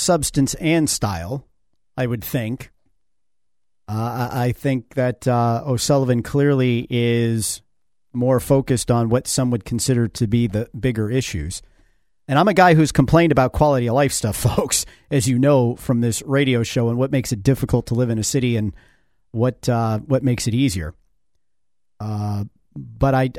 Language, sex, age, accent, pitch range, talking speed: English, male, 50-69, American, 115-135 Hz, 165 wpm